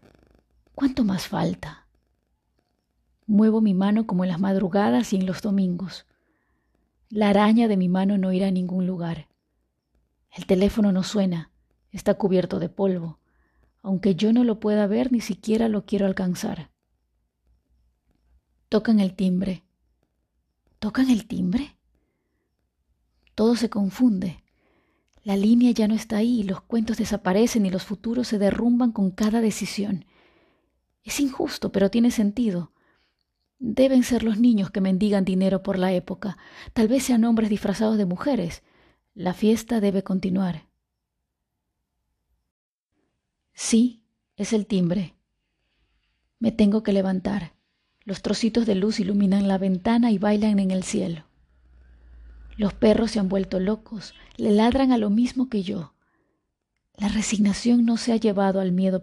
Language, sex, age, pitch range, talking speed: Spanish, female, 30-49, 180-220 Hz, 140 wpm